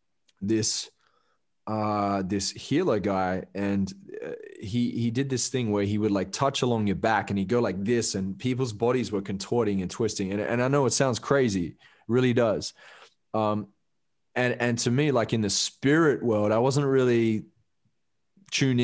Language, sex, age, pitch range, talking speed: English, male, 20-39, 100-120 Hz, 170 wpm